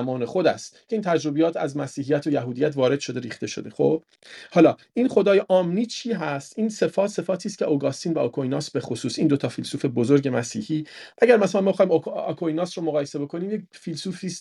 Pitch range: 140-180 Hz